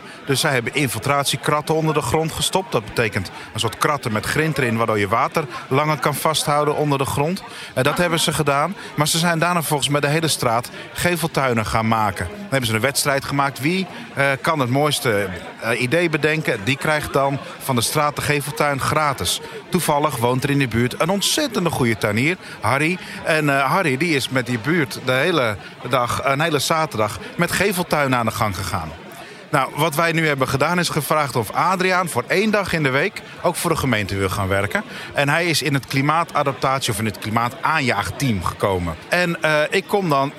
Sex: male